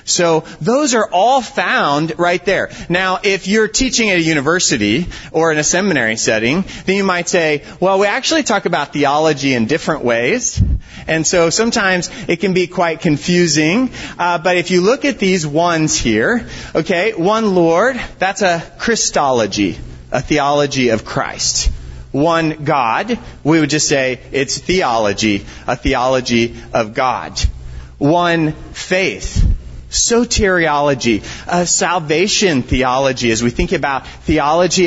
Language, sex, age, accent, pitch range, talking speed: English, male, 30-49, American, 145-195 Hz, 140 wpm